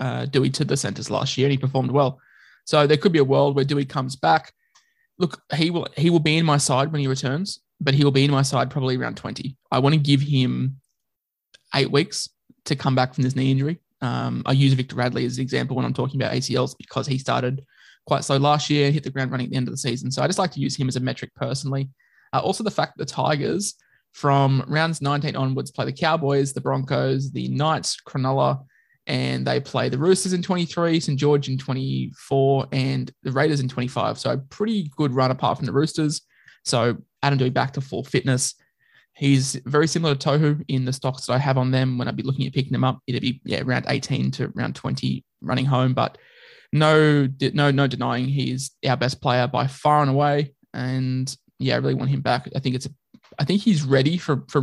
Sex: male